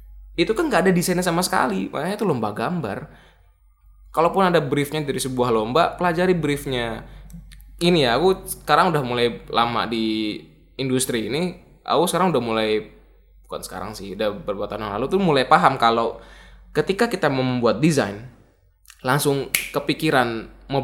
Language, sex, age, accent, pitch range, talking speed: Indonesian, male, 10-29, native, 110-155 Hz, 145 wpm